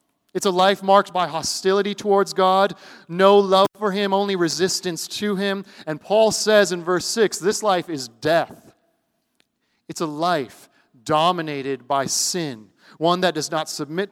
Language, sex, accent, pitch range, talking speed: English, male, American, 140-180 Hz, 155 wpm